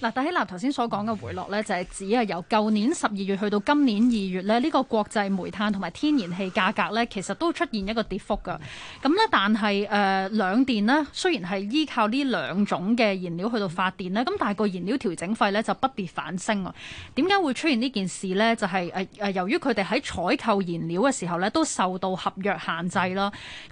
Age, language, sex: 20-39, Chinese, female